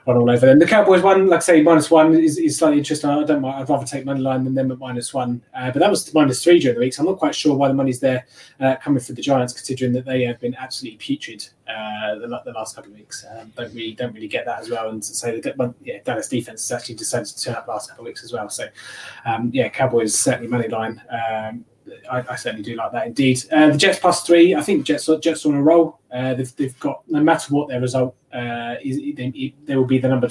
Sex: male